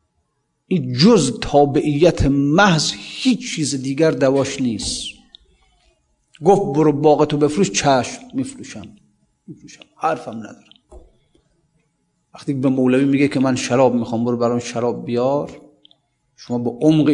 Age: 40-59